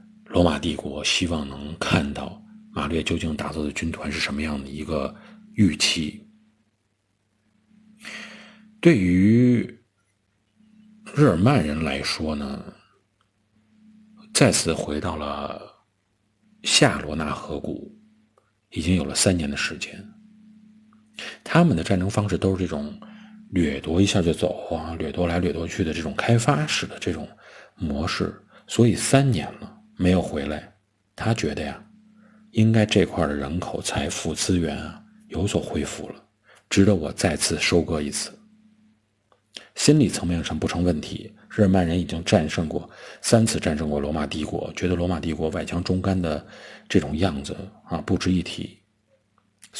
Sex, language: male, Chinese